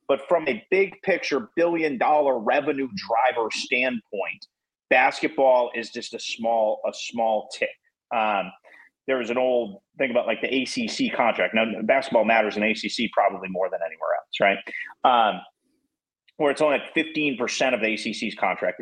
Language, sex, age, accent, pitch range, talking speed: English, male, 30-49, American, 115-170 Hz, 165 wpm